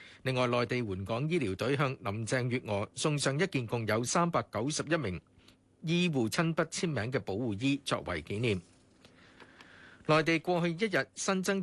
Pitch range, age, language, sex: 110-160 Hz, 50-69, Chinese, male